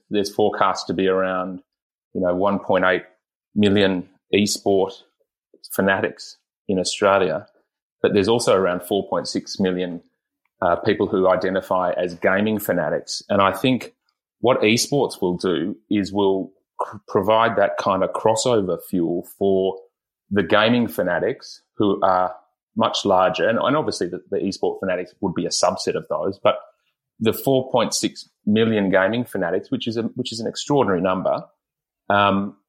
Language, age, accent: English, 30-49, Australian